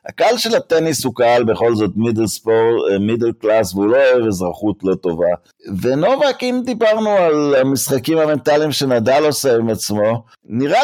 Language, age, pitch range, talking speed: Hebrew, 50-69, 95-155 Hz, 155 wpm